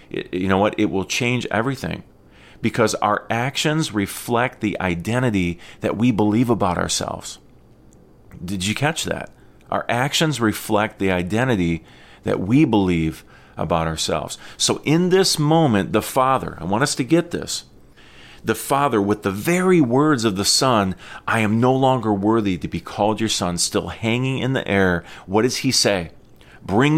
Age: 40-59